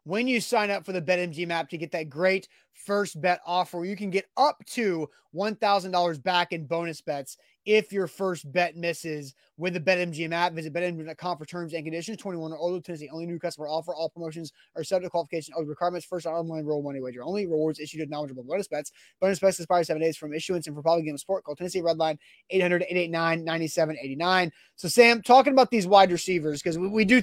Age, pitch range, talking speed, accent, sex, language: 20-39, 160-185 Hz, 215 wpm, American, male, English